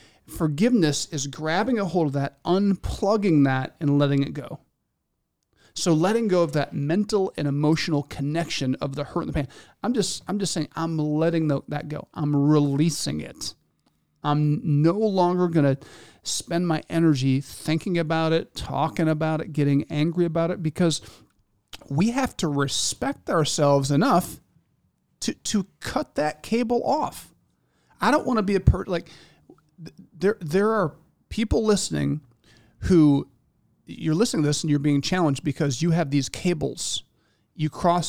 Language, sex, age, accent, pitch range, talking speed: English, male, 40-59, American, 145-175 Hz, 160 wpm